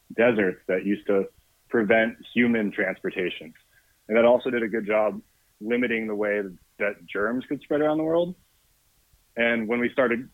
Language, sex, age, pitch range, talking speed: English, male, 30-49, 105-120 Hz, 165 wpm